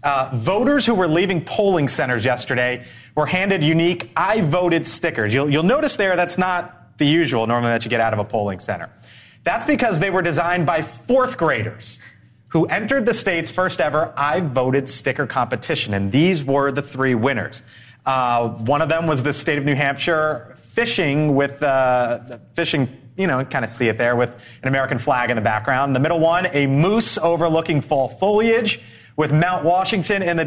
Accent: American